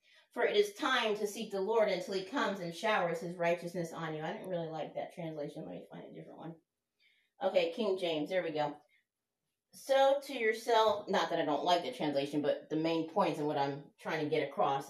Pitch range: 160-220 Hz